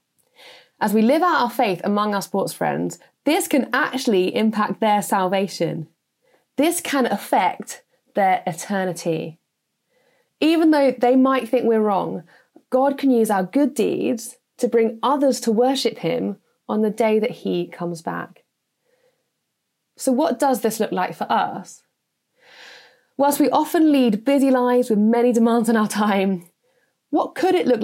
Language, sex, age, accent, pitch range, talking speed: English, female, 20-39, British, 195-260 Hz, 155 wpm